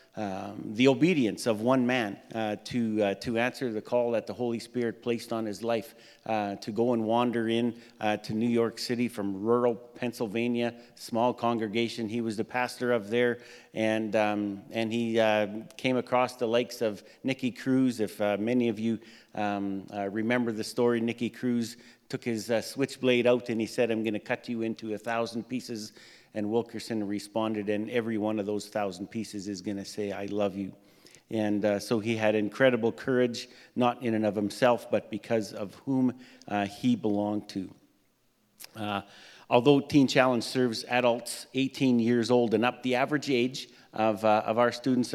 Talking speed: 185 wpm